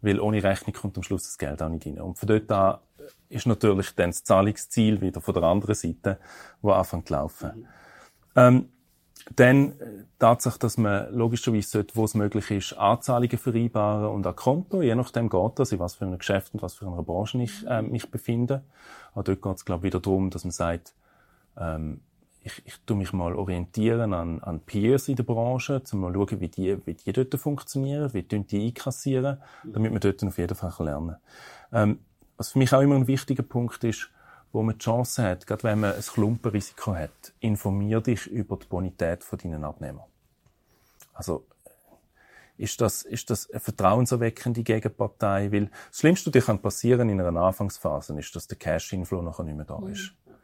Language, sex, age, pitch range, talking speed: German, male, 30-49, 95-120 Hz, 190 wpm